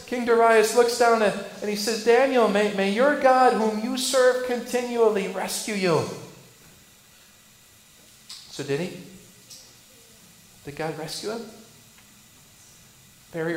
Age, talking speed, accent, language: 40-59, 115 wpm, American, English